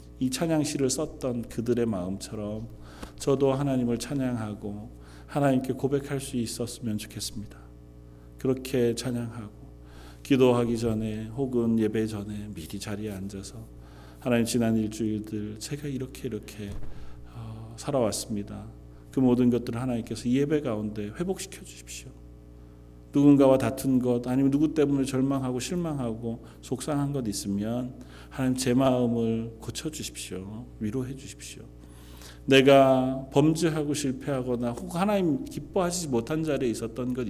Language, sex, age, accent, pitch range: Korean, male, 40-59, native, 100-130 Hz